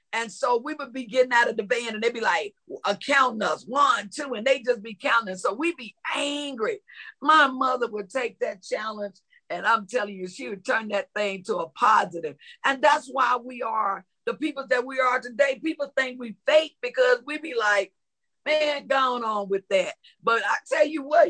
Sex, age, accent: female, 50-69, American